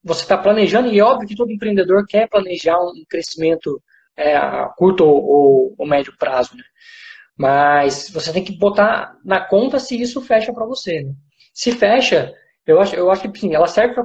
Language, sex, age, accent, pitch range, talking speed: Portuguese, male, 20-39, Brazilian, 160-230 Hz, 190 wpm